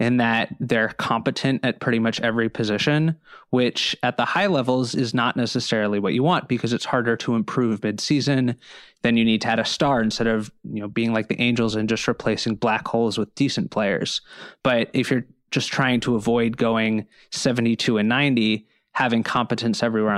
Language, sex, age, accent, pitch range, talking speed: English, male, 20-39, American, 110-130 Hz, 185 wpm